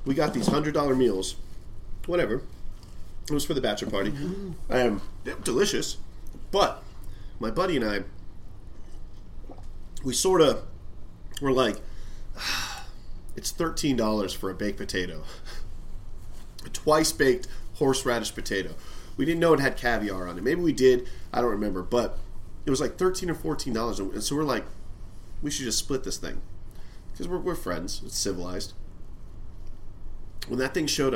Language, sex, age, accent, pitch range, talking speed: English, male, 30-49, American, 100-135 Hz, 145 wpm